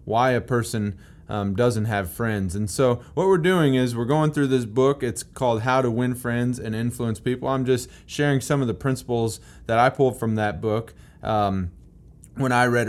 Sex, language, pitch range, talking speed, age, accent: male, English, 105-130 Hz, 205 wpm, 30-49, American